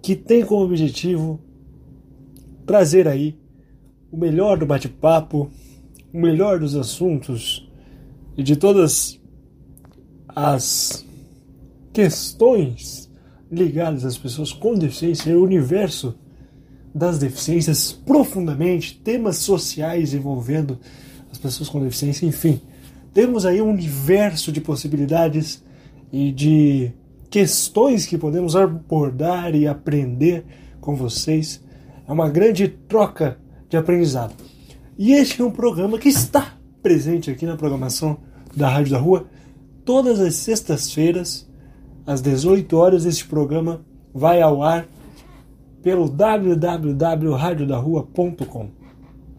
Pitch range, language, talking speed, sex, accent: 140-180 Hz, Portuguese, 105 wpm, male, Brazilian